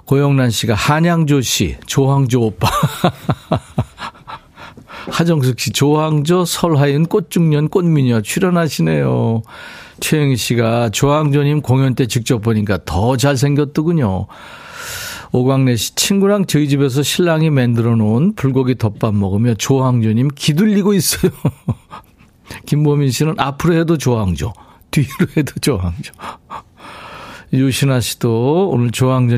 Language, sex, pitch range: Korean, male, 115-155 Hz